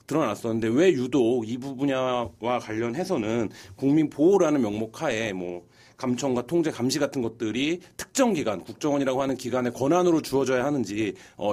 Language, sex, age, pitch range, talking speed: English, male, 30-49, 110-145 Hz, 120 wpm